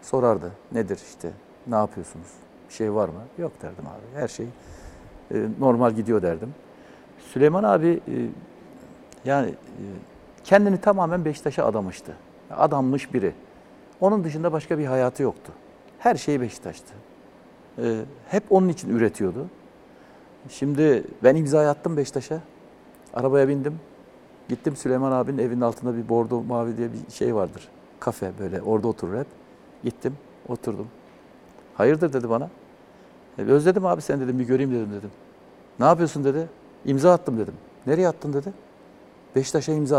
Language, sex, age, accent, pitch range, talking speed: Turkish, male, 60-79, native, 120-160 Hz, 135 wpm